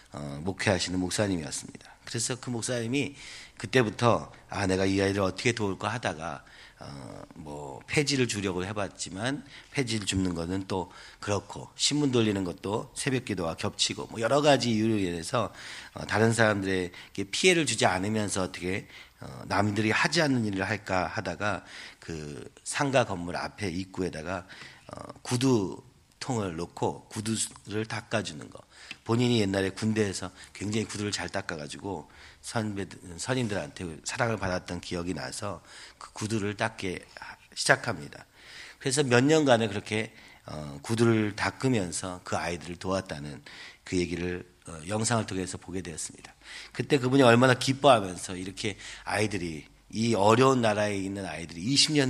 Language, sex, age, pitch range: Korean, male, 40-59, 90-115 Hz